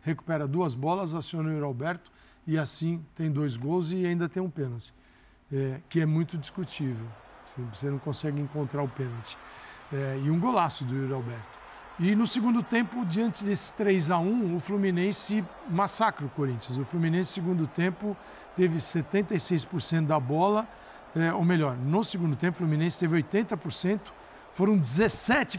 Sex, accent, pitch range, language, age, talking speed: male, Brazilian, 150-210 Hz, Portuguese, 60-79, 150 wpm